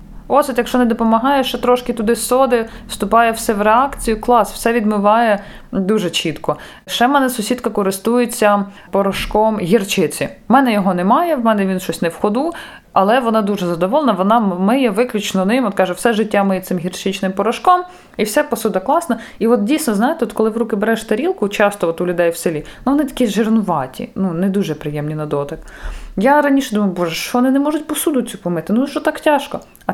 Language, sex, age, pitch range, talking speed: Ukrainian, female, 20-39, 190-245 Hz, 190 wpm